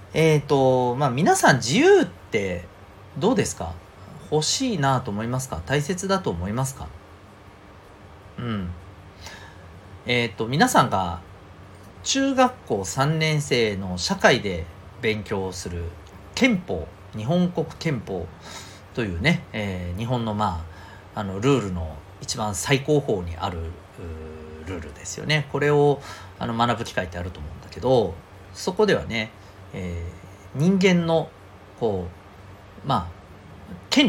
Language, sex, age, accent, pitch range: Japanese, male, 40-59, native, 90-125 Hz